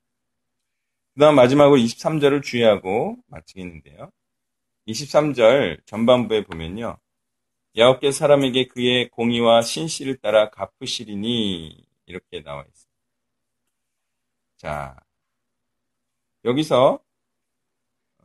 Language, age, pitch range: Korean, 40-59, 115-145 Hz